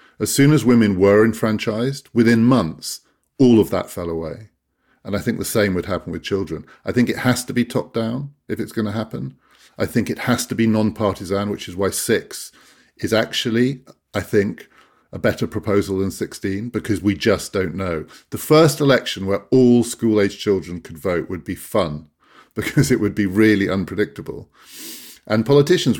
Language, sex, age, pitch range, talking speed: English, male, 50-69, 100-120 Hz, 180 wpm